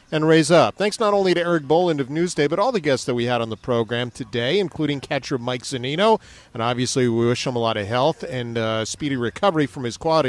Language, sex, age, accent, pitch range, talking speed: English, male, 40-59, American, 125-195 Hz, 245 wpm